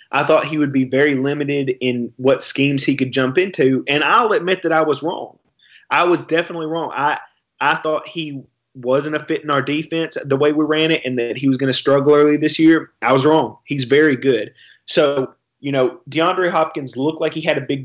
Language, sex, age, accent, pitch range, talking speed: English, male, 20-39, American, 125-150 Hz, 225 wpm